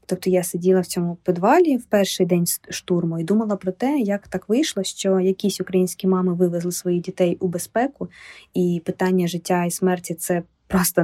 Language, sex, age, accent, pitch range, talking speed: Ukrainian, female, 20-39, native, 185-210 Hz, 185 wpm